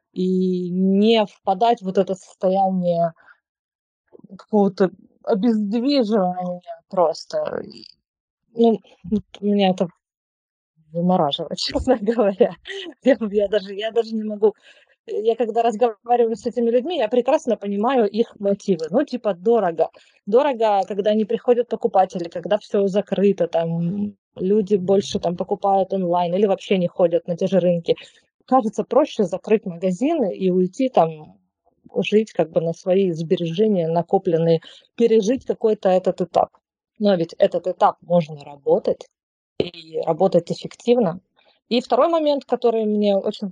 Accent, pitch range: native, 185-235 Hz